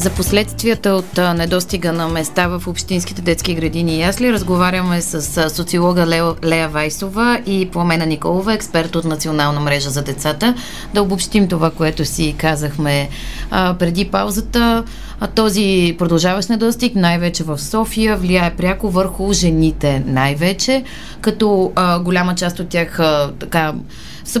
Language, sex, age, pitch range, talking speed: Bulgarian, female, 30-49, 160-205 Hz, 135 wpm